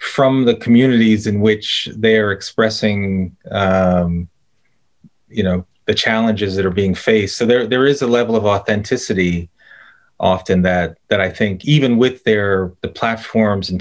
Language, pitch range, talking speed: English, 95-120 Hz, 155 wpm